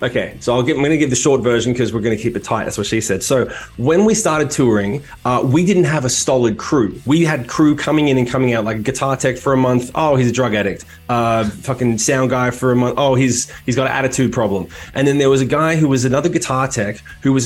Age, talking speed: 20-39, 270 wpm